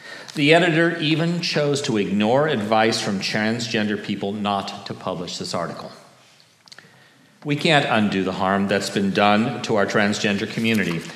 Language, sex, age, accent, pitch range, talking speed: English, male, 40-59, American, 100-125 Hz, 145 wpm